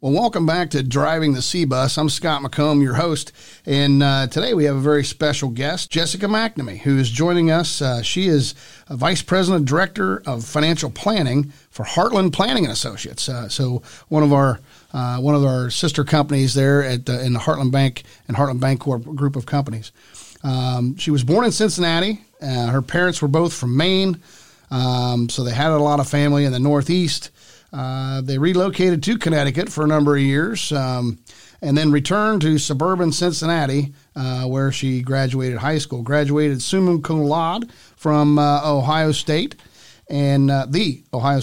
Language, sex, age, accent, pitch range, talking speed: English, male, 40-59, American, 135-165 Hz, 180 wpm